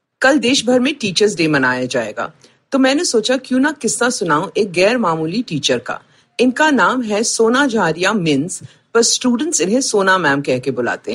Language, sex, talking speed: Hindi, female, 180 wpm